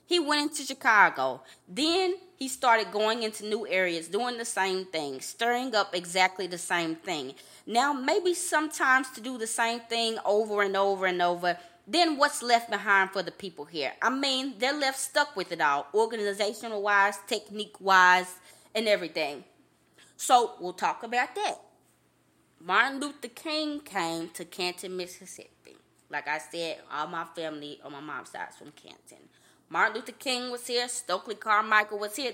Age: 20-39